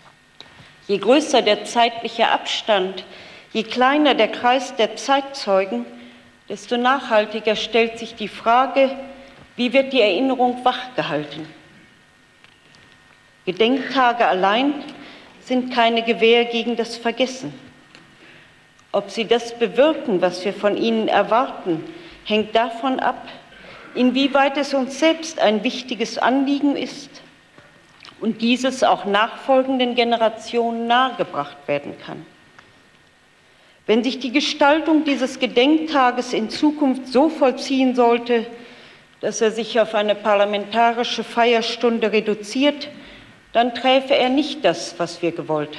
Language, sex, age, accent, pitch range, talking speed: German, female, 40-59, German, 215-265 Hz, 110 wpm